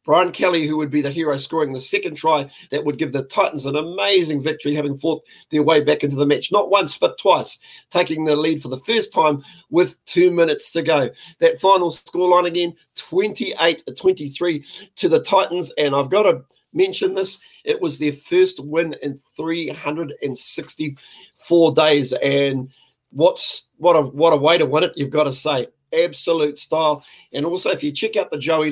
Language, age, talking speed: English, 40-59, 185 wpm